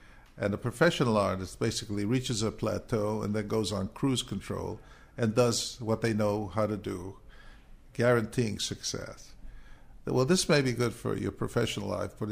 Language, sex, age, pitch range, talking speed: English, male, 50-69, 100-120 Hz, 165 wpm